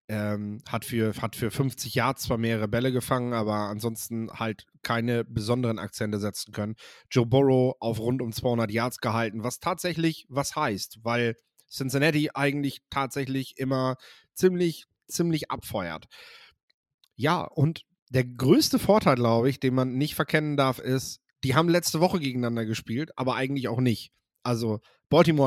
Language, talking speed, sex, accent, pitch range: German, 150 wpm, male, German, 115-145 Hz